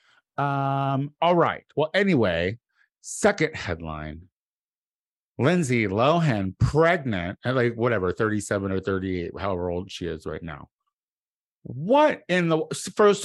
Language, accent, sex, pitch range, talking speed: English, American, male, 95-130 Hz, 115 wpm